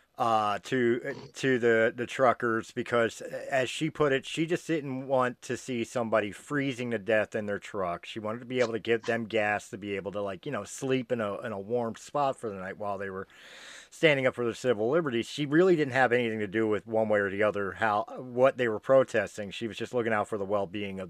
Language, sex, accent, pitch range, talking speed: English, male, American, 110-140 Hz, 245 wpm